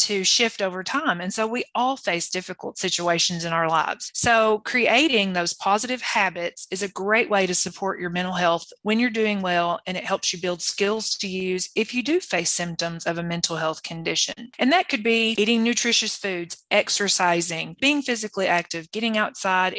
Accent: American